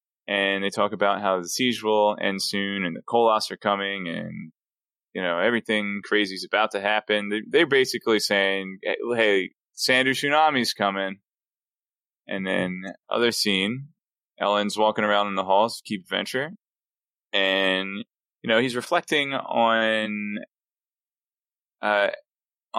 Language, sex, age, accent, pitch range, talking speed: English, male, 20-39, American, 100-120 Hz, 135 wpm